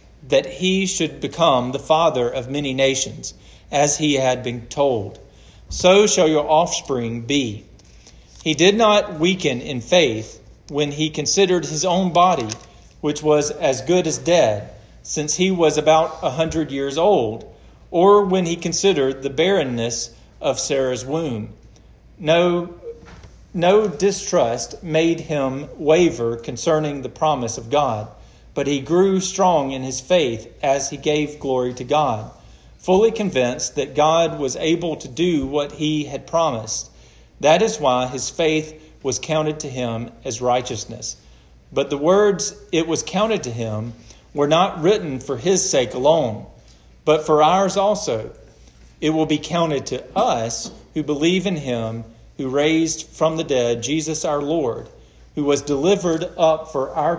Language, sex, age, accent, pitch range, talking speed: English, male, 40-59, American, 125-165 Hz, 150 wpm